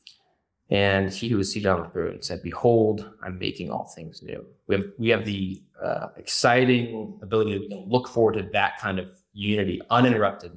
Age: 20-39